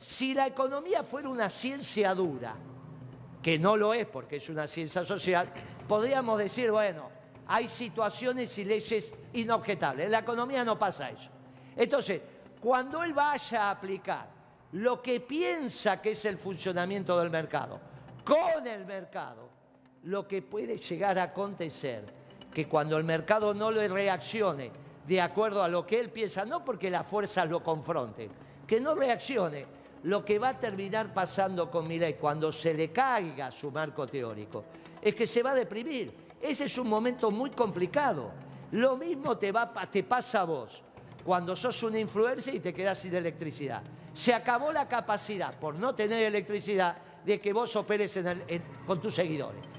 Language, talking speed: Spanish, 170 wpm